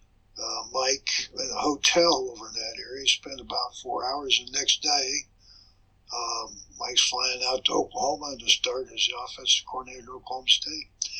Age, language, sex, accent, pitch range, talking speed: 60-79, English, male, American, 110-150 Hz, 175 wpm